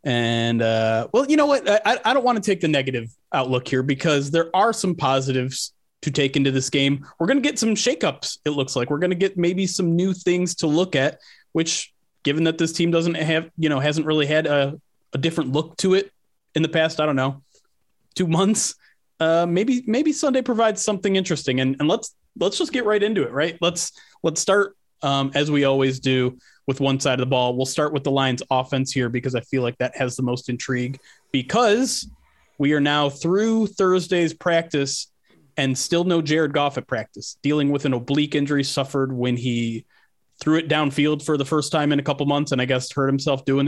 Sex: male